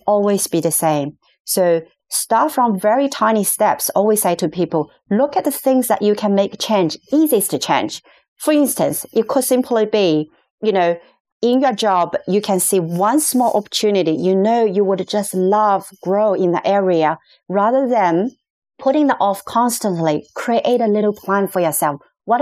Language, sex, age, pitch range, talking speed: English, female, 40-59, 170-215 Hz, 175 wpm